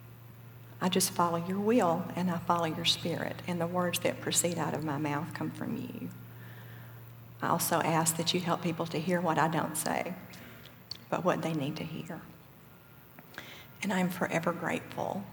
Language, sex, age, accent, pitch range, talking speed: English, female, 50-69, American, 150-215 Hz, 180 wpm